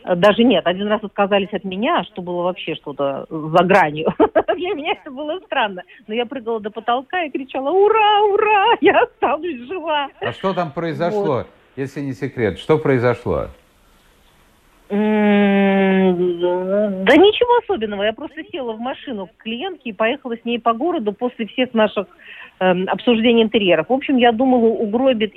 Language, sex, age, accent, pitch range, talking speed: Russian, female, 50-69, native, 180-260 Hz, 155 wpm